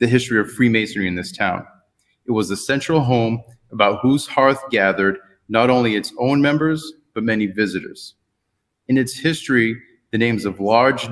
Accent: American